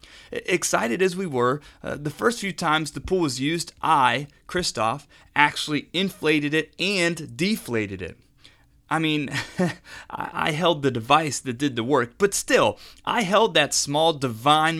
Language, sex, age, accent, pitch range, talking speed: English, male, 30-49, American, 130-180 Hz, 160 wpm